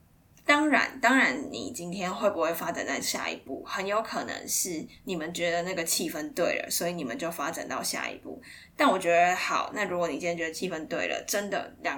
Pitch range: 170-235 Hz